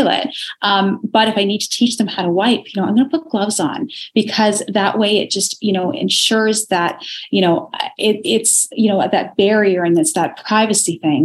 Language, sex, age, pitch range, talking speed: English, female, 30-49, 170-205 Hz, 225 wpm